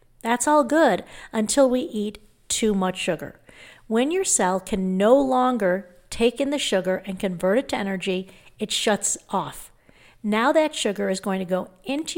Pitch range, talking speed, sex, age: 200-260 Hz, 170 wpm, female, 50-69